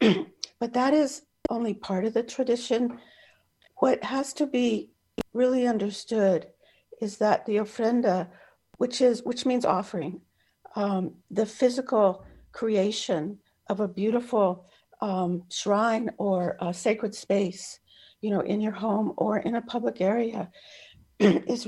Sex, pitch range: female, 195-240 Hz